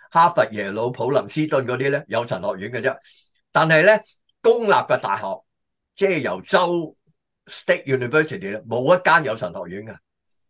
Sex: male